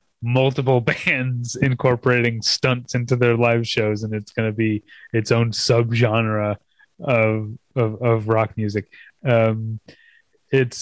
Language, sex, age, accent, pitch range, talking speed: English, male, 20-39, American, 115-140 Hz, 130 wpm